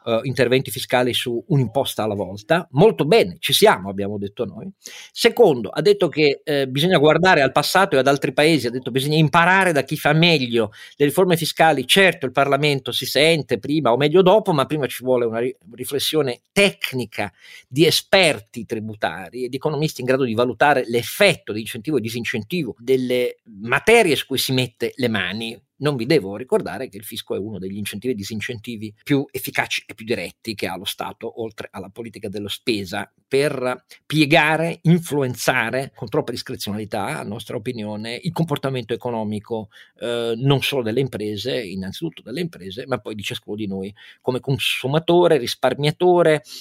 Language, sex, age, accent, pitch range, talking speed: Italian, male, 50-69, native, 115-150 Hz, 170 wpm